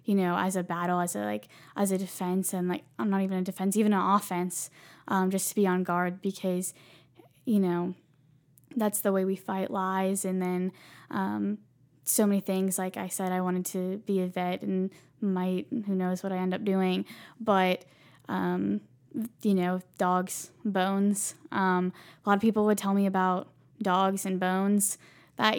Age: 10-29